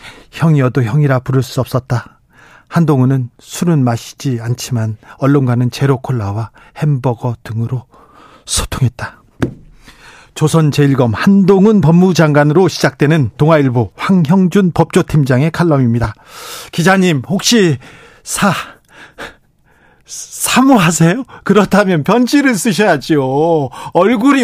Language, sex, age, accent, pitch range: Korean, male, 40-59, native, 135-200 Hz